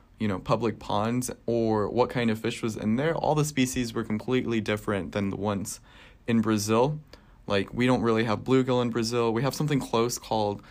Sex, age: male, 20-39